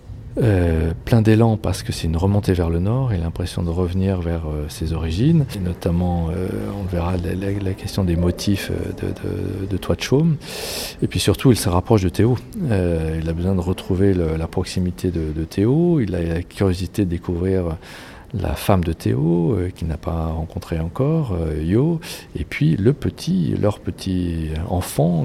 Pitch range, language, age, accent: 85-105 Hz, French, 40-59, French